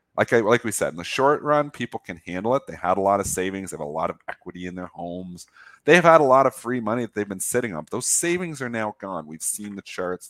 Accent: American